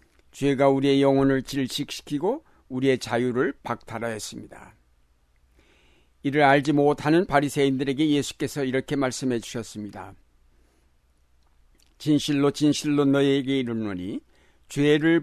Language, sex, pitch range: Korean, male, 110-155 Hz